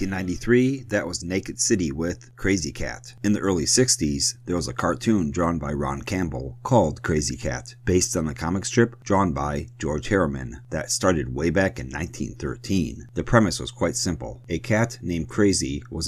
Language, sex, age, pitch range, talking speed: English, male, 40-59, 85-115 Hz, 185 wpm